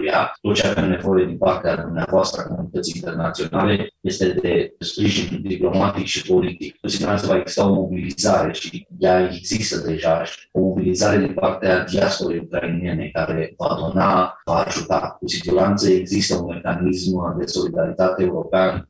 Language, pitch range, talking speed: Romanian, 90-100 Hz, 145 wpm